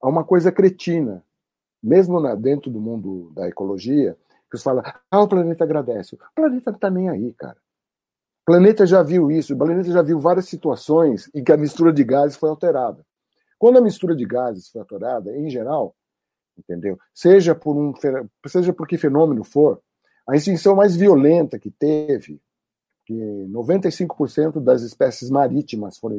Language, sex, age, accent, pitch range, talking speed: Portuguese, male, 60-79, Brazilian, 125-170 Hz, 165 wpm